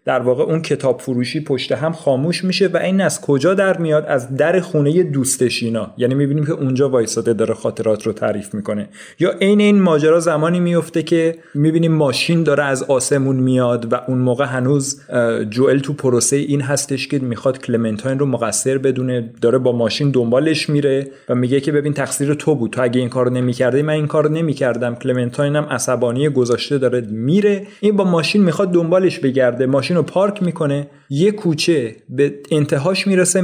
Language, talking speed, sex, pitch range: Persian, 180 wpm, male, 120-150 Hz